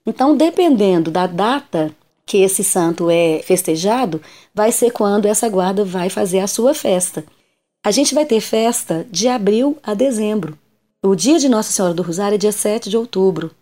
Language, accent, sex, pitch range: Portuguese, Brazilian, female, 185-255 Hz